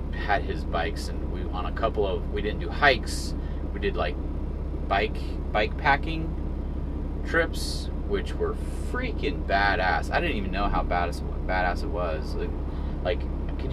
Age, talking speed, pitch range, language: 30-49, 160 wpm, 70-80 Hz, English